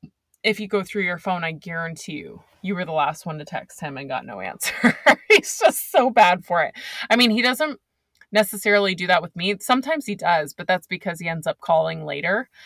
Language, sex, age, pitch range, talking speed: English, female, 20-39, 165-205 Hz, 225 wpm